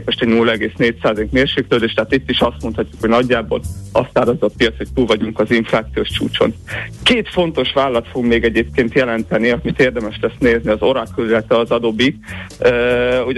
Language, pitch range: Hungarian, 115-140 Hz